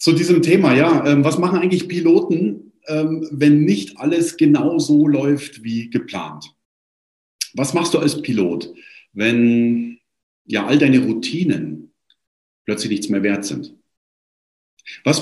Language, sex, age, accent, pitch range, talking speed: German, male, 50-69, German, 105-160 Hz, 125 wpm